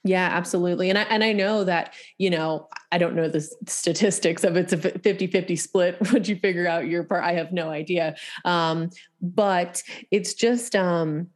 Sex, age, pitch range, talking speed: female, 30-49, 155-185 Hz, 190 wpm